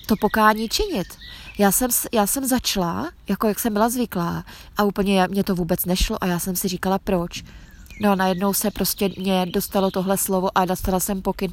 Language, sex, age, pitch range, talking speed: Czech, female, 20-39, 190-210 Hz, 200 wpm